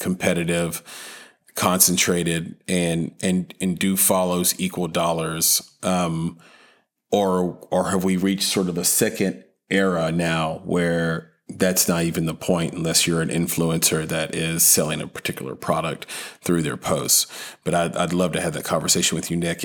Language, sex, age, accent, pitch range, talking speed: English, male, 40-59, American, 85-95 Hz, 155 wpm